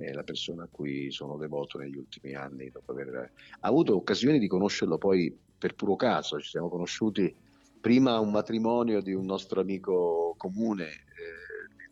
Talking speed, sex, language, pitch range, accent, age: 165 wpm, male, Italian, 85-105 Hz, native, 50-69